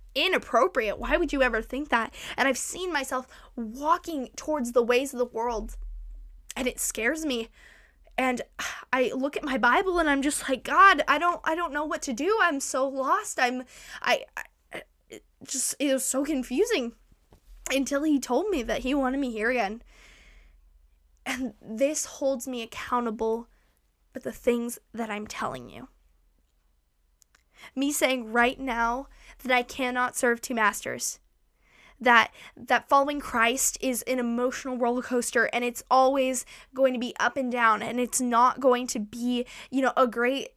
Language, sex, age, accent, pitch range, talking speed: English, female, 10-29, American, 230-275 Hz, 165 wpm